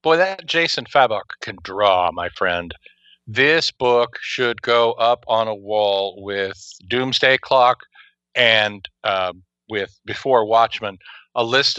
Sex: male